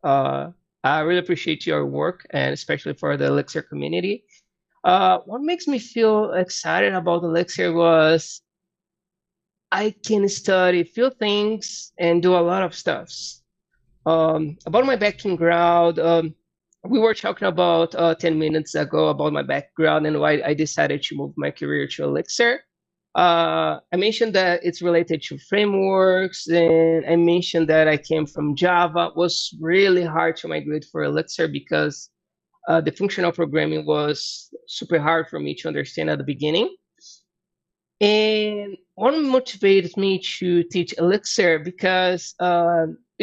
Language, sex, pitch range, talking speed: English, male, 165-190 Hz, 150 wpm